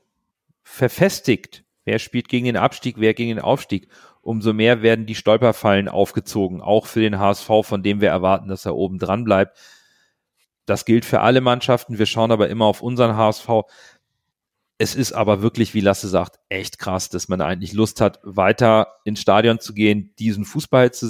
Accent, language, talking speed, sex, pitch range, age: German, German, 180 wpm, male, 100-120 Hz, 40-59